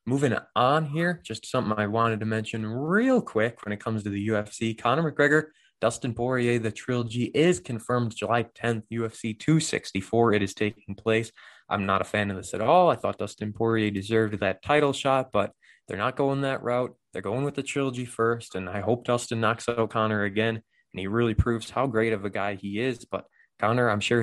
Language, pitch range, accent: English, 105-125 Hz, American